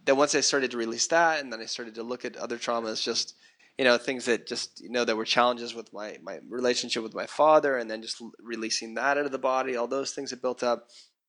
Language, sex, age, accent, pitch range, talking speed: English, male, 20-39, American, 110-130 Hz, 260 wpm